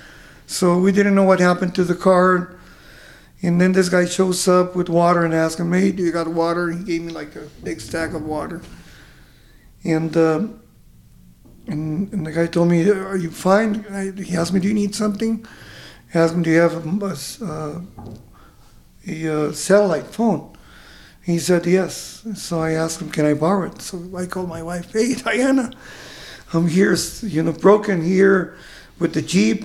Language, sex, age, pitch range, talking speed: English, male, 50-69, 170-200 Hz, 185 wpm